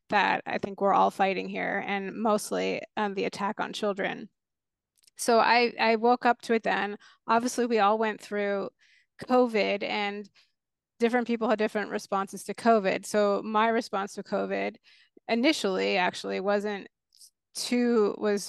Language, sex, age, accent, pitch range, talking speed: English, female, 20-39, American, 200-230 Hz, 150 wpm